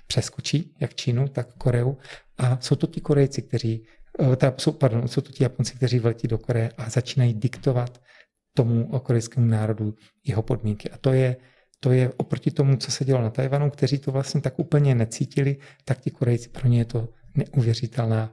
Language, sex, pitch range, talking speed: Czech, male, 115-140 Hz, 180 wpm